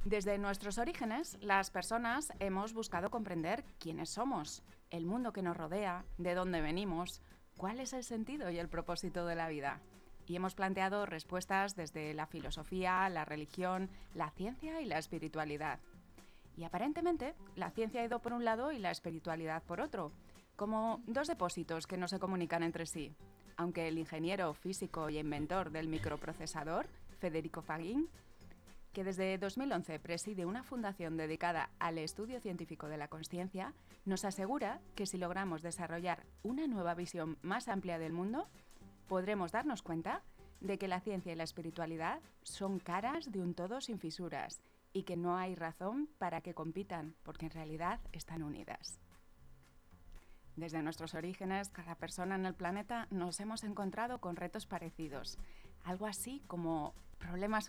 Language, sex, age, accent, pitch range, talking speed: Spanish, female, 30-49, Spanish, 165-200 Hz, 155 wpm